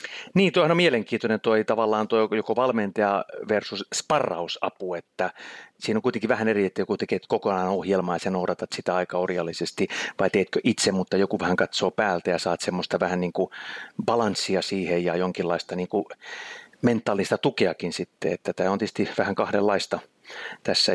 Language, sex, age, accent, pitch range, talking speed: Finnish, male, 30-49, native, 95-145 Hz, 155 wpm